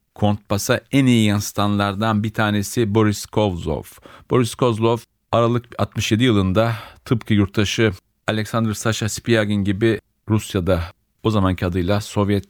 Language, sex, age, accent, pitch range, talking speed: Turkish, male, 40-59, native, 95-110 Hz, 115 wpm